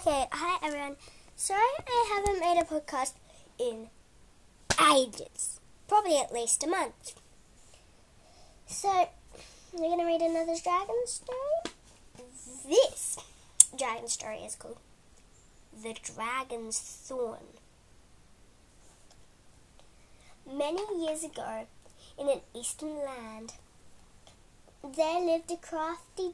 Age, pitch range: 10-29, 255-330 Hz